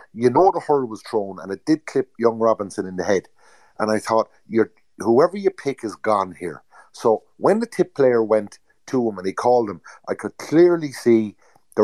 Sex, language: male, English